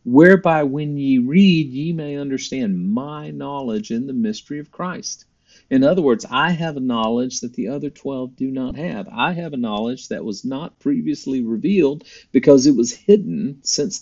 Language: English